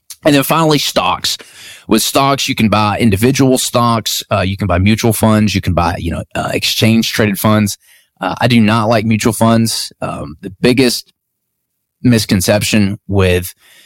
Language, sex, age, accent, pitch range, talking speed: English, male, 20-39, American, 95-115 Hz, 165 wpm